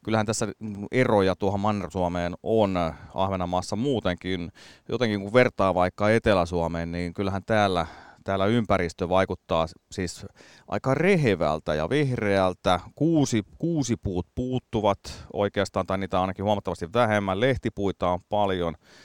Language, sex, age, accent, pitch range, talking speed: Finnish, male, 30-49, native, 90-110 Hz, 115 wpm